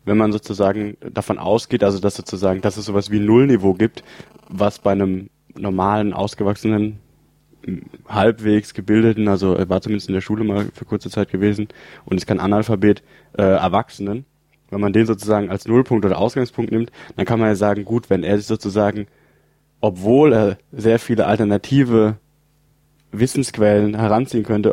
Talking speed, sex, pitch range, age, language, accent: 165 wpm, male, 100-120 Hz, 20-39, English, German